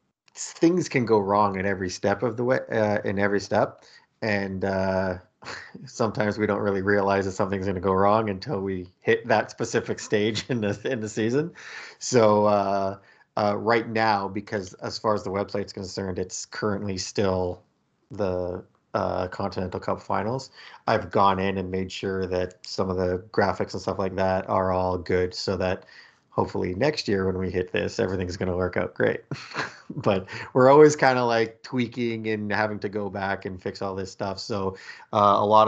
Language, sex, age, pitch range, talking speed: English, male, 30-49, 95-110 Hz, 190 wpm